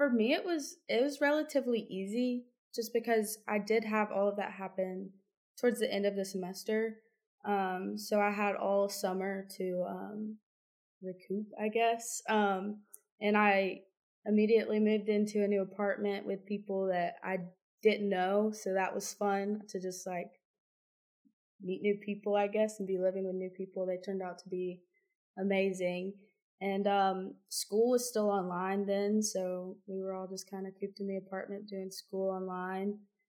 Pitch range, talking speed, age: 185-215 Hz, 170 wpm, 20-39